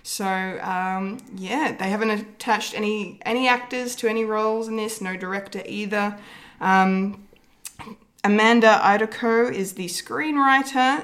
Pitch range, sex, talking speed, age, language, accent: 180-225 Hz, female, 125 wpm, 20-39, English, Australian